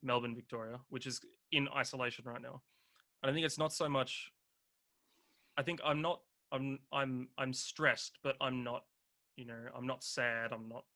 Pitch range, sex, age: 120-135 Hz, male, 20-39